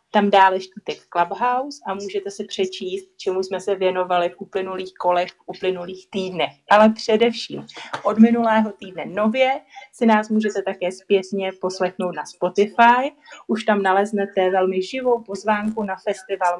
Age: 30-49